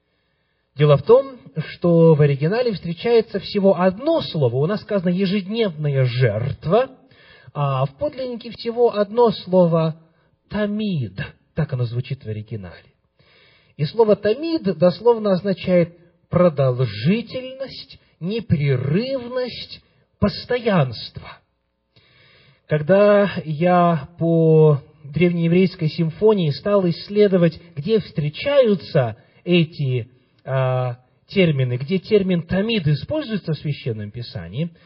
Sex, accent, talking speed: male, native, 90 wpm